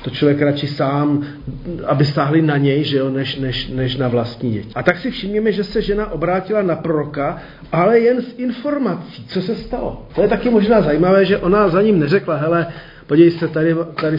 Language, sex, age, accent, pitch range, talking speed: Czech, male, 40-59, native, 145-175 Hz, 205 wpm